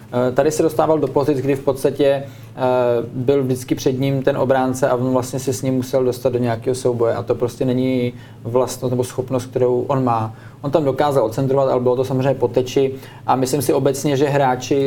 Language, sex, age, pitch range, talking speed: Czech, male, 20-39, 130-145 Hz, 200 wpm